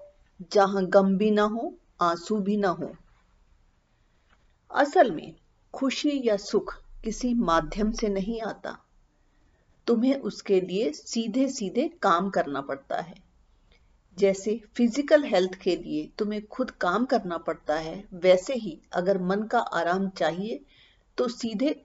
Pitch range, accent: 185-235 Hz, native